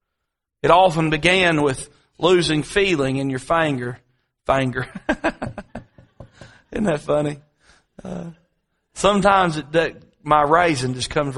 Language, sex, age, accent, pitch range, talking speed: English, male, 40-59, American, 125-160 Hz, 105 wpm